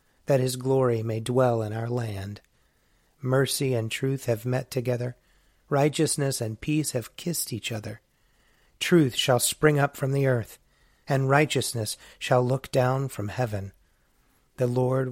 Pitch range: 110-135 Hz